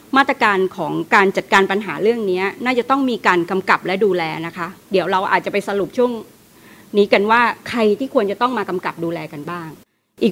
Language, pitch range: Thai, 180-230 Hz